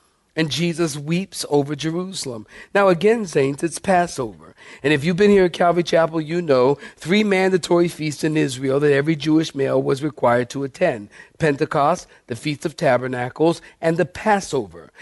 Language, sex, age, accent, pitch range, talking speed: English, male, 50-69, American, 135-180 Hz, 165 wpm